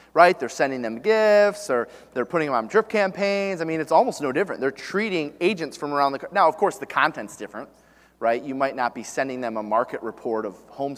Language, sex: English, male